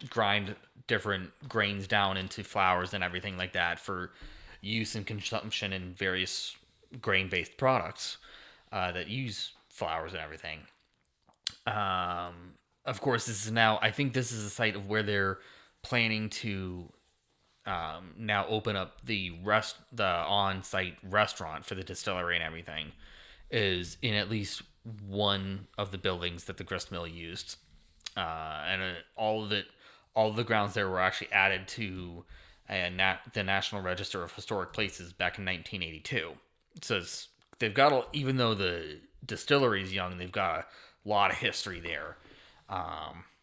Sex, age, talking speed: male, 20-39, 155 wpm